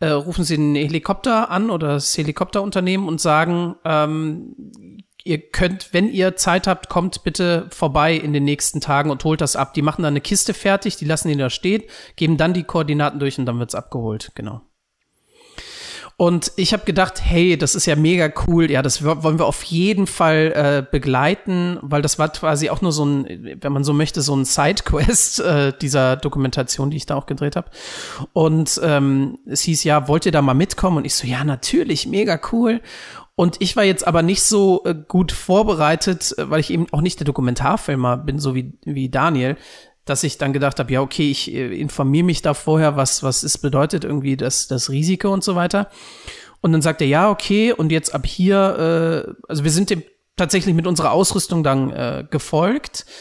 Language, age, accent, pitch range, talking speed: German, 40-59, German, 145-185 Hz, 200 wpm